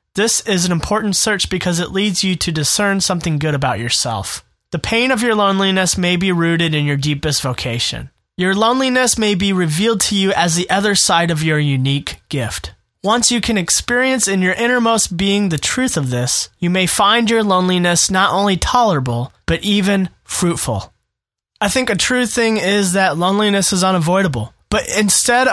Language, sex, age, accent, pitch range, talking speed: English, male, 20-39, American, 165-215 Hz, 180 wpm